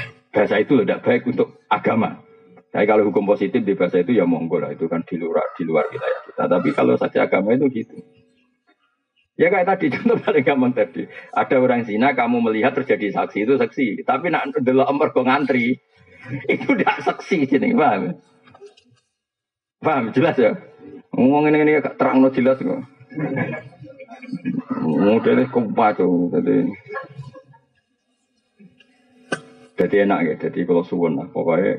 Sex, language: male, Indonesian